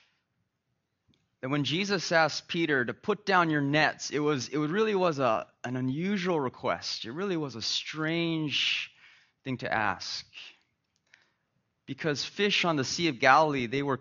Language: English